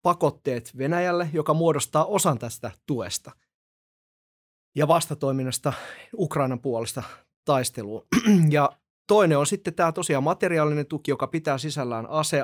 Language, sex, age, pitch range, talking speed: Finnish, male, 30-49, 125-155 Hz, 115 wpm